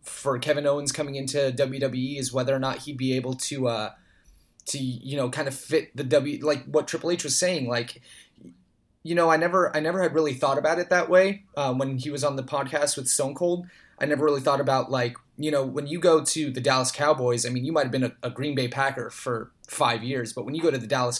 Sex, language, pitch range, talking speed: male, English, 125-145 Hz, 250 wpm